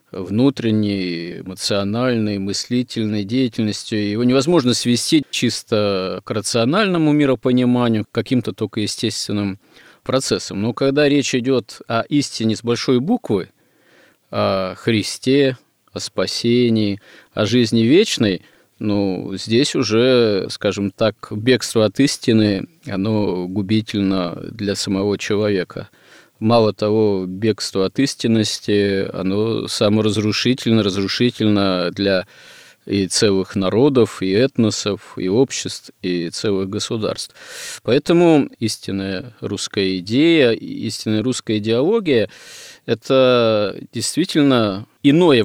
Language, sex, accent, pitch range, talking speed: Russian, male, native, 100-125 Hz, 100 wpm